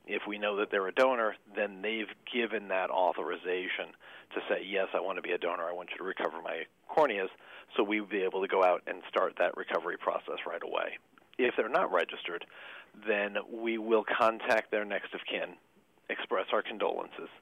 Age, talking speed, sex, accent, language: 40-59, 195 wpm, male, American, English